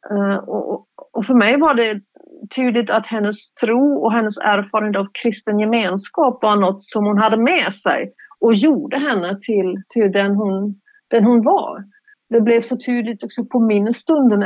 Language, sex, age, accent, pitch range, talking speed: Swedish, female, 40-59, native, 195-235 Hz, 170 wpm